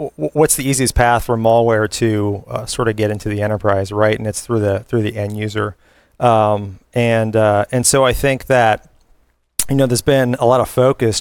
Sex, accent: male, American